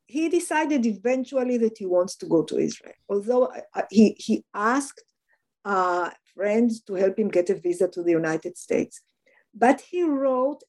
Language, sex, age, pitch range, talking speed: English, female, 50-69, 185-250 Hz, 165 wpm